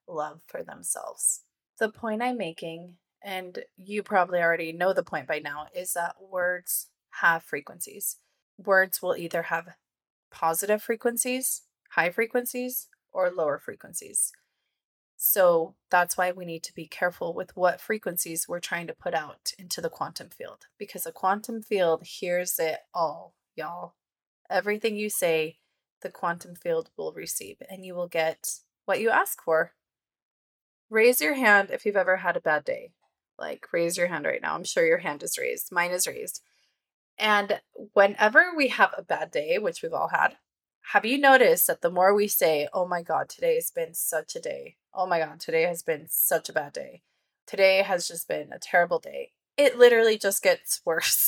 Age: 20-39